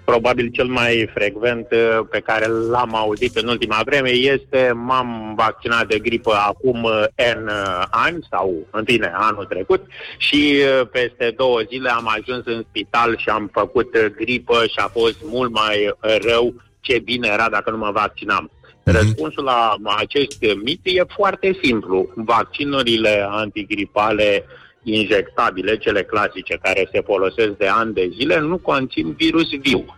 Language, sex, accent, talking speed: Romanian, male, native, 145 wpm